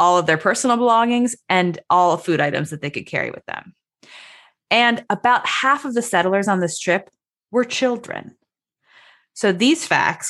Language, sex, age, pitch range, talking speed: English, female, 20-39, 170-250 Hz, 170 wpm